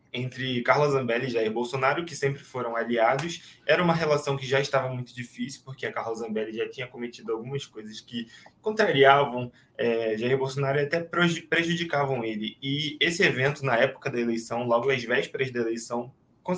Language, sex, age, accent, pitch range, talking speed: Portuguese, male, 20-39, Brazilian, 120-150 Hz, 175 wpm